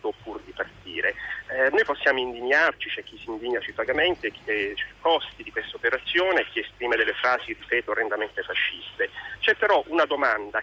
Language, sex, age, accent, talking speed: Italian, male, 30-49, native, 165 wpm